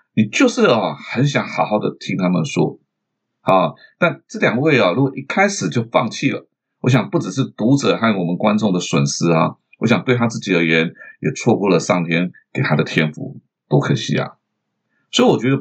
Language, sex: Chinese, male